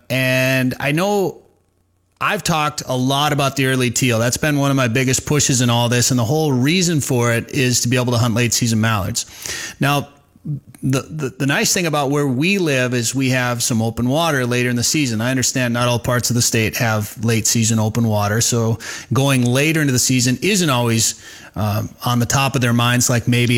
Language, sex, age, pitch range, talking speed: English, male, 30-49, 120-145 Hz, 220 wpm